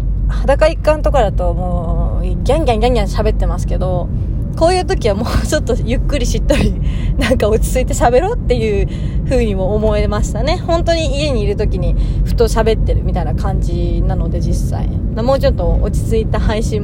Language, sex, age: Japanese, female, 20-39